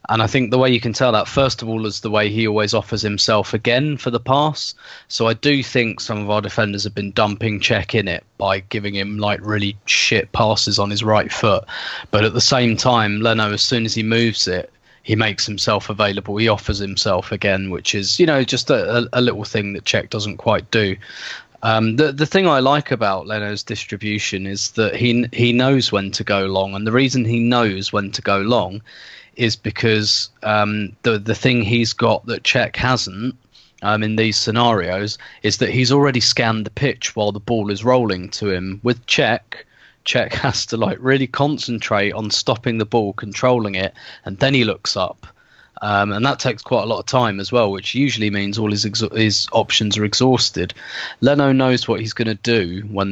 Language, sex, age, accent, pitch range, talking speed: English, male, 20-39, British, 105-120 Hz, 210 wpm